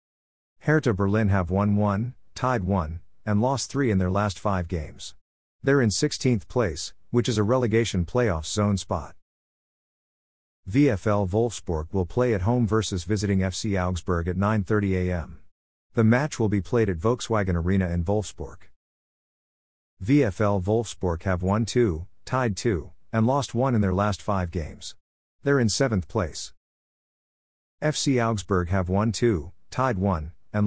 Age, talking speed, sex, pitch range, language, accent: 50-69, 150 wpm, male, 90-115 Hz, English, American